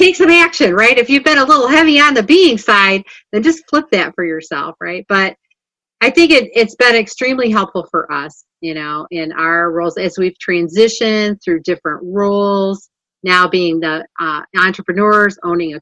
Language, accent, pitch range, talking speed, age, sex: English, American, 160-210 Hz, 180 wpm, 40-59, female